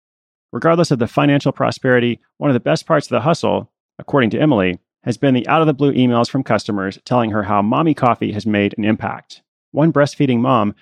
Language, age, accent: English, 30-49, American